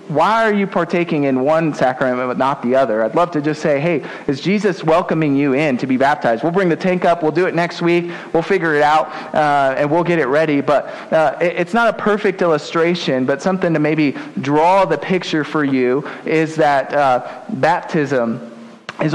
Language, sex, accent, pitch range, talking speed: English, male, American, 145-190 Hz, 205 wpm